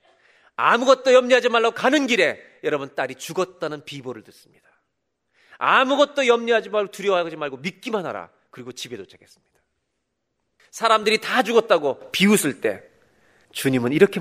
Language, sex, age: Korean, male, 40-59